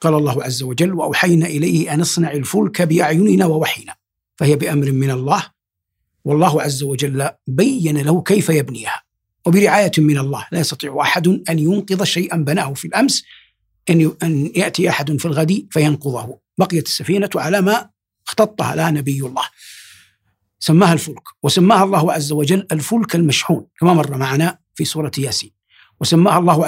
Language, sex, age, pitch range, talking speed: Arabic, male, 60-79, 140-175 Hz, 145 wpm